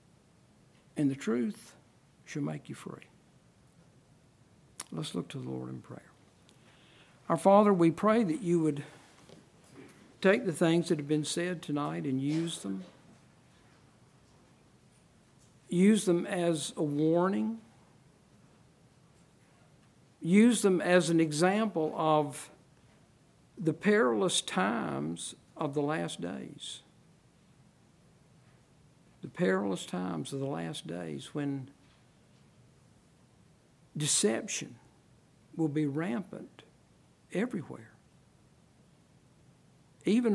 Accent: American